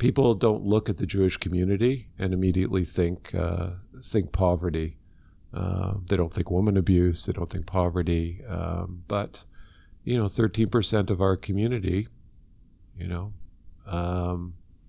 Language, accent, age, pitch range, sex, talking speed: English, American, 50-69, 90-105 Hz, male, 135 wpm